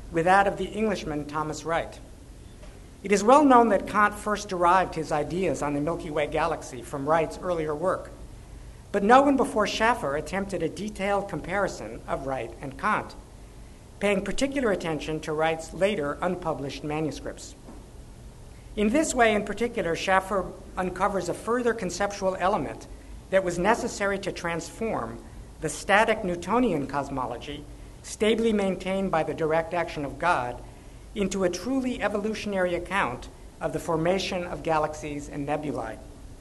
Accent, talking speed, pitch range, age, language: American, 145 wpm, 155-205 Hz, 50-69, English